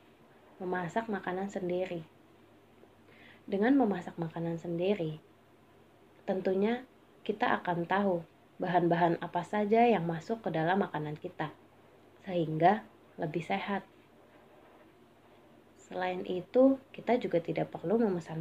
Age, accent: 20-39, native